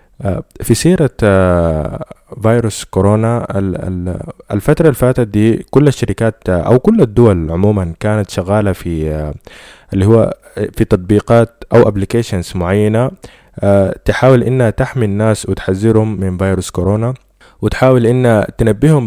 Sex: male